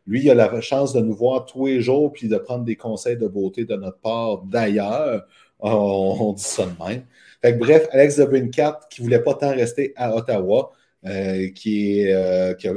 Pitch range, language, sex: 105-130 Hz, French, male